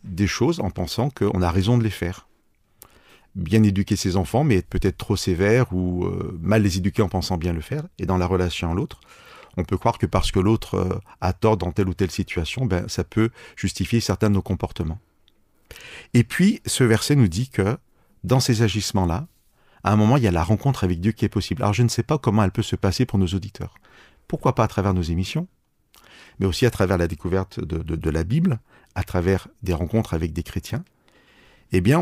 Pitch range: 90-115 Hz